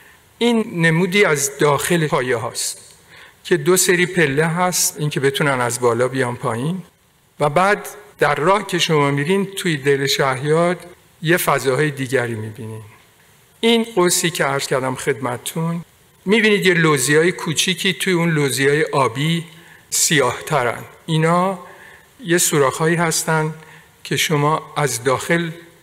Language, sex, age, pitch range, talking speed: Persian, male, 50-69, 135-180 Hz, 130 wpm